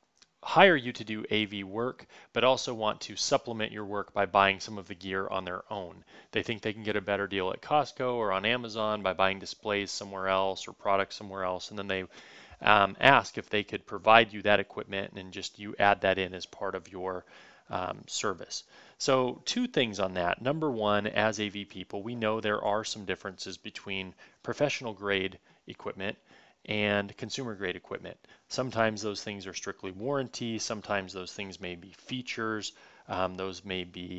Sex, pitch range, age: male, 95-110 Hz, 30-49